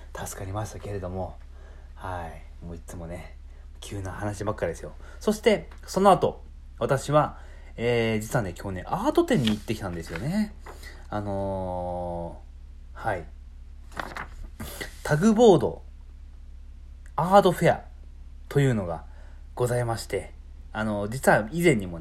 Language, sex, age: Japanese, male, 30-49